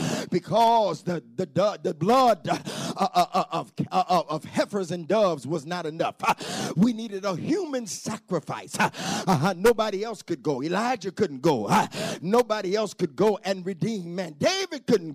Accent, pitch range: American, 175-220 Hz